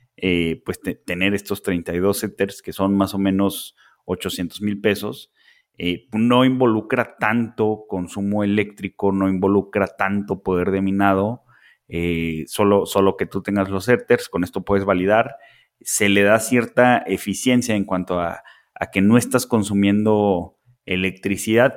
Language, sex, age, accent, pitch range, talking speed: Spanish, male, 30-49, Mexican, 95-110 Hz, 145 wpm